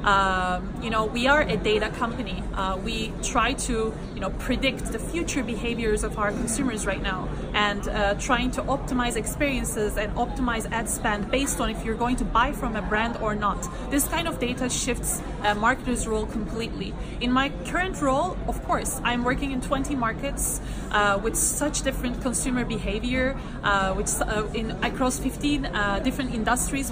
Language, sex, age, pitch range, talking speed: English, female, 20-39, 205-250 Hz, 180 wpm